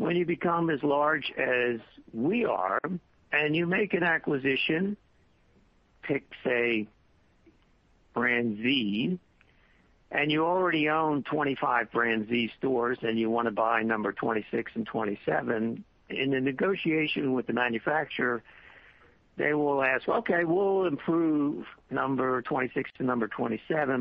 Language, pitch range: English, 120-155 Hz